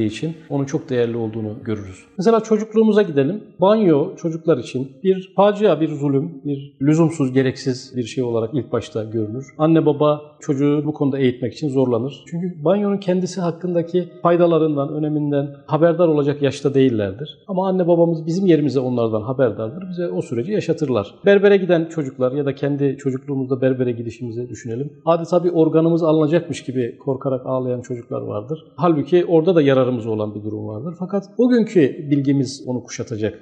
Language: Turkish